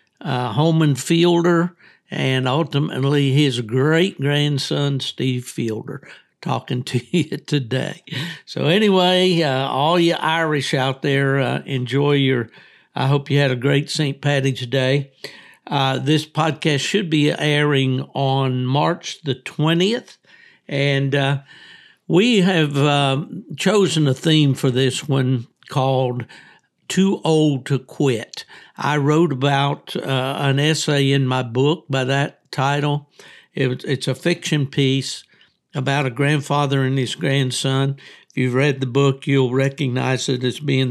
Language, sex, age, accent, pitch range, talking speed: English, male, 60-79, American, 130-155 Hz, 130 wpm